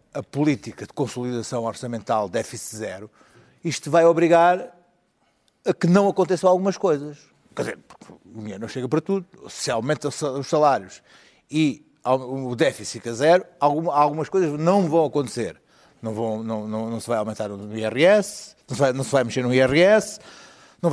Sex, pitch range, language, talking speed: male, 125-180 Hz, Portuguese, 165 wpm